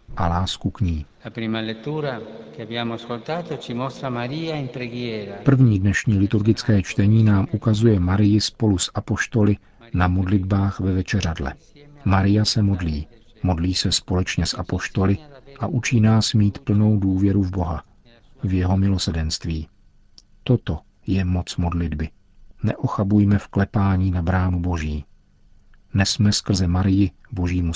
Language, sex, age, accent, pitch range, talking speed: Czech, male, 50-69, native, 90-110 Hz, 110 wpm